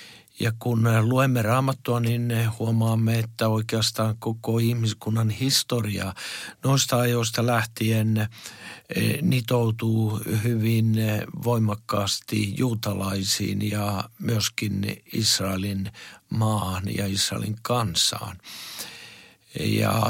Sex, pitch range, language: male, 110-125 Hz, Finnish